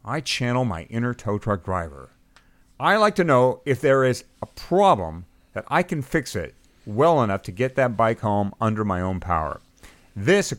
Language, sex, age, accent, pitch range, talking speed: English, male, 50-69, American, 105-145 Hz, 195 wpm